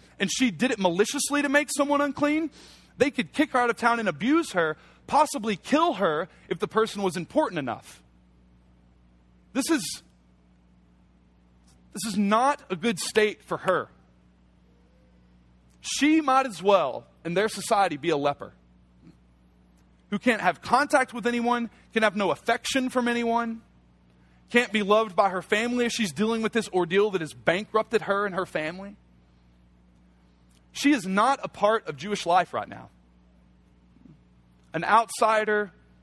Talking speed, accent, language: 150 wpm, American, English